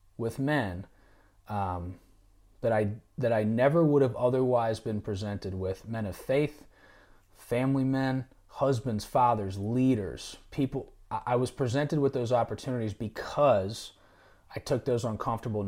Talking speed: 130 wpm